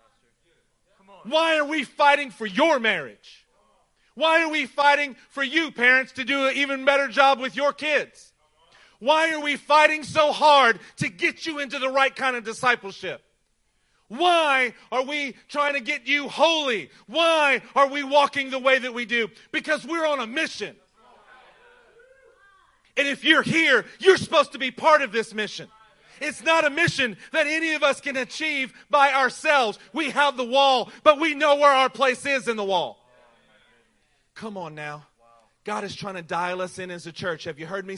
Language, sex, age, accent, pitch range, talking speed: English, male, 40-59, American, 220-290 Hz, 180 wpm